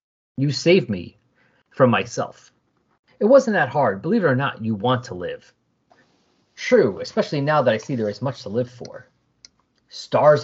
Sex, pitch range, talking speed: male, 120-170 Hz, 170 wpm